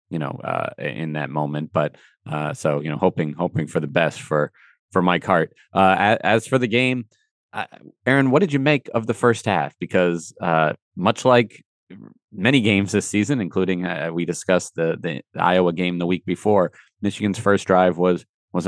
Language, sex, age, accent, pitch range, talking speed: English, male, 30-49, American, 80-100 Hz, 195 wpm